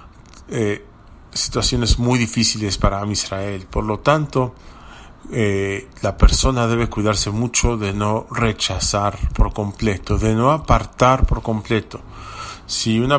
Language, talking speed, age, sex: English, 125 wpm, 40-59, male